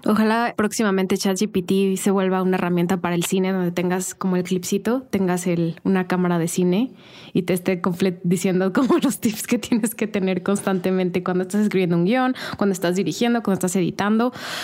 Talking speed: 185 wpm